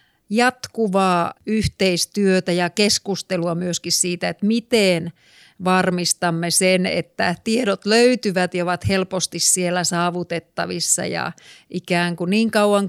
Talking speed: 105 wpm